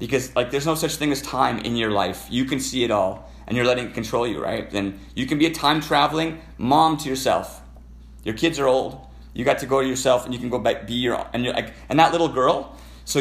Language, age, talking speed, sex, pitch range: English, 30-49, 265 wpm, male, 95-135 Hz